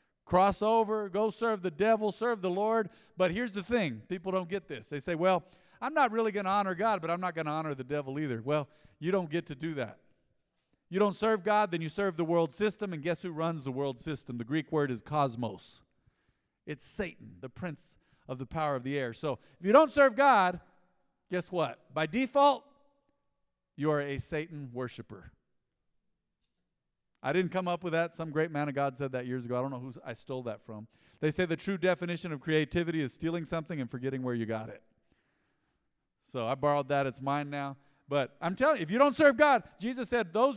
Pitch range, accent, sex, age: 145-210 Hz, American, male, 50-69